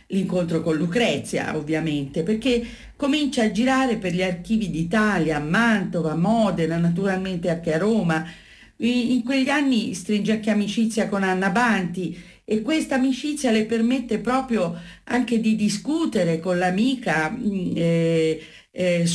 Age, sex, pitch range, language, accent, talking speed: 50-69, female, 170-240 Hz, Italian, native, 135 wpm